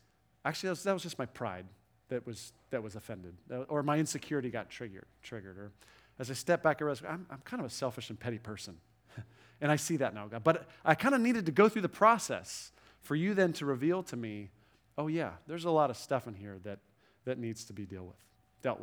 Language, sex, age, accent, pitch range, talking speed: English, male, 40-59, American, 110-160 Hz, 240 wpm